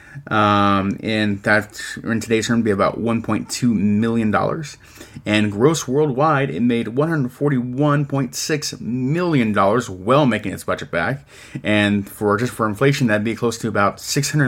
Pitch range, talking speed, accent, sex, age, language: 105-135 Hz, 150 wpm, American, male, 30-49, English